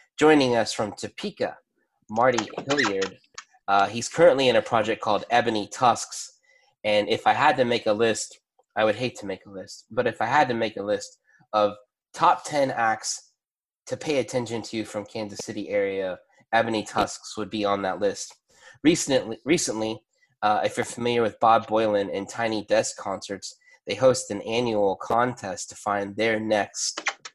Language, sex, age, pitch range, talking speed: English, male, 20-39, 105-135 Hz, 175 wpm